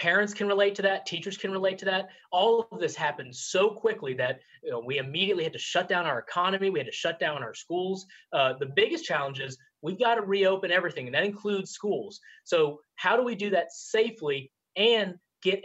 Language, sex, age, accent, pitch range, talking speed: English, male, 30-49, American, 150-195 Hz, 210 wpm